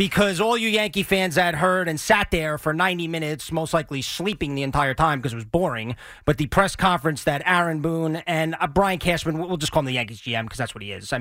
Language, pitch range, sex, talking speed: English, 140-195 Hz, male, 250 wpm